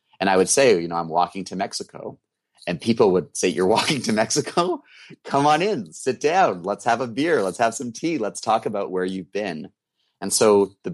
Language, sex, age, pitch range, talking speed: English, male, 30-49, 90-125 Hz, 220 wpm